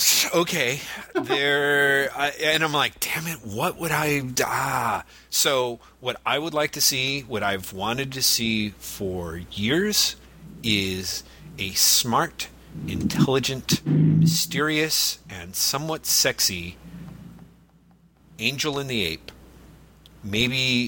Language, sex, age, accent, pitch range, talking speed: English, male, 40-59, American, 95-130 Hz, 110 wpm